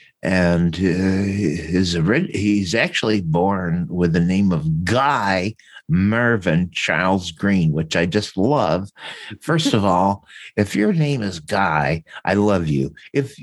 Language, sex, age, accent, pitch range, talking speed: English, male, 60-79, American, 95-160 Hz, 135 wpm